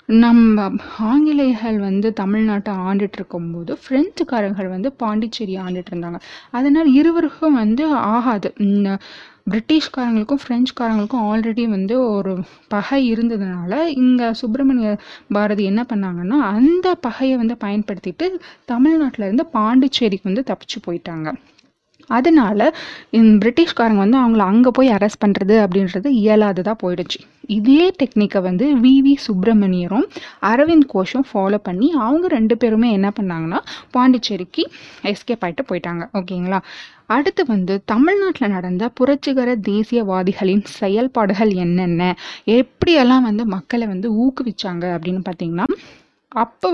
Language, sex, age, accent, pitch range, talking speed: Tamil, female, 20-39, native, 195-260 Hz, 110 wpm